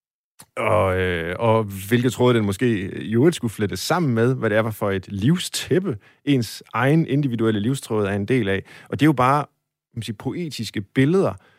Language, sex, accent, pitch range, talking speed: Danish, male, native, 105-135 Hz, 165 wpm